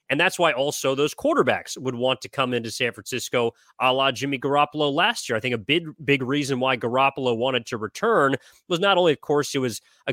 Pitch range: 125-155 Hz